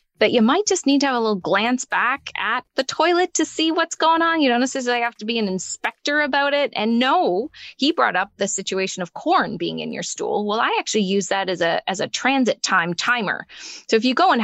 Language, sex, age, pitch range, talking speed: English, female, 20-39, 195-260 Hz, 245 wpm